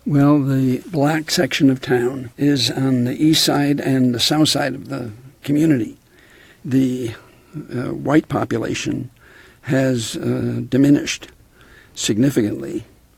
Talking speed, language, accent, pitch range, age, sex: 120 wpm, English, American, 115-140 Hz, 60-79, male